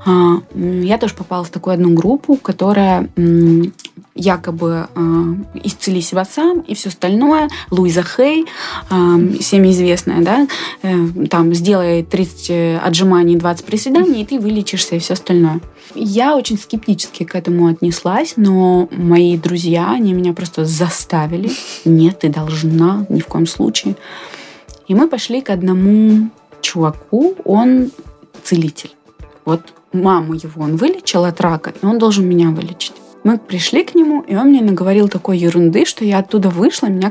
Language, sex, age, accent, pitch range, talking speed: Russian, female, 20-39, native, 175-215 Hz, 140 wpm